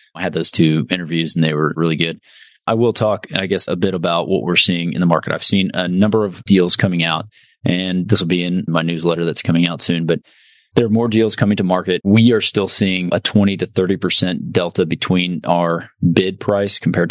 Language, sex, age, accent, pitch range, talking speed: English, male, 20-39, American, 85-100 Hz, 230 wpm